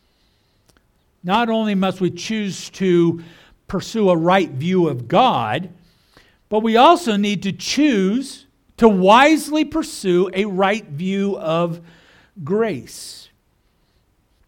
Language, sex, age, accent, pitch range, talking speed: English, male, 60-79, American, 175-255 Hz, 110 wpm